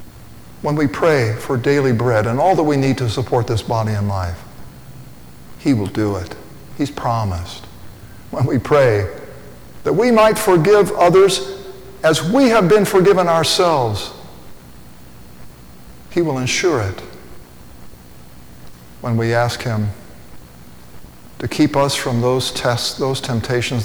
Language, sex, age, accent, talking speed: English, male, 50-69, American, 135 wpm